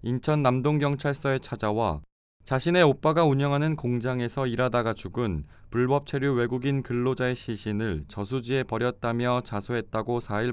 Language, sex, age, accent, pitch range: Korean, male, 20-39, native, 105-140 Hz